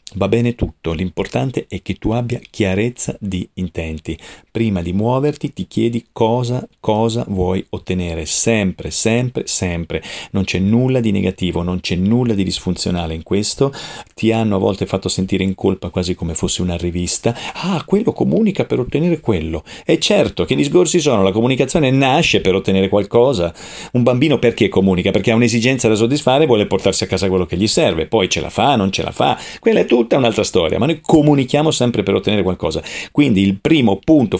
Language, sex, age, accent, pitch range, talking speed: Italian, male, 40-59, native, 95-120 Hz, 190 wpm